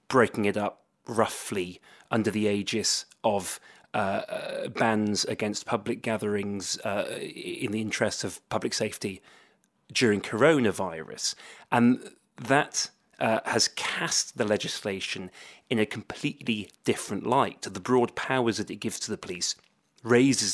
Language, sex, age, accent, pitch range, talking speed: English, male, 30-49, British, 105-120 Hz, 130 wpm